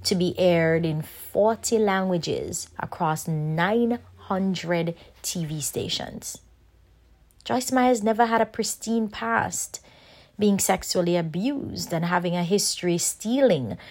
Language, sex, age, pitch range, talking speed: English, female, 30-49, 150-195 Hz, 110 wpm